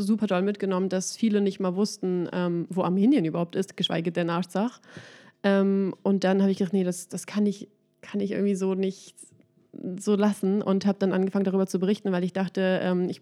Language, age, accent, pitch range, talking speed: German, 20-39, German, 185-210 Hz, 210 wpm